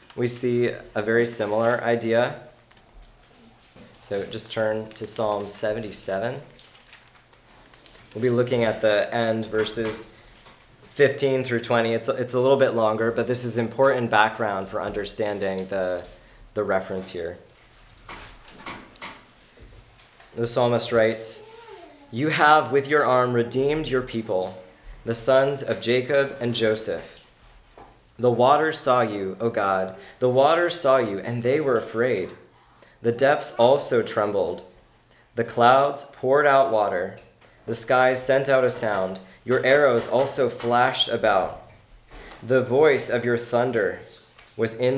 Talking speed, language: 130 wpm, English